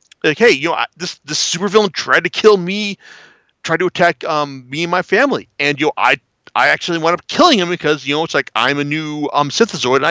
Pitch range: 120-170 Hz